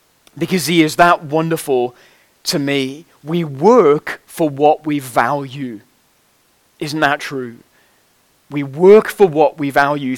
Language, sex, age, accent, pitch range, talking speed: English, male, 30-49, British, 165-220 Hz, 130 wpm